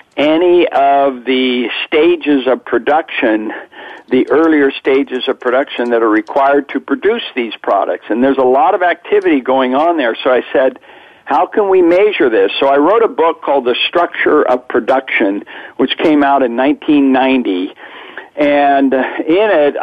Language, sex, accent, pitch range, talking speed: English, male, American, 125-170 Hz, 160 wpm